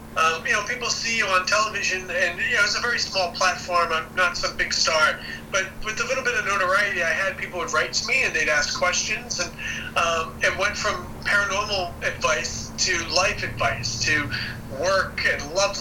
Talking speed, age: 200 wpm, 40-59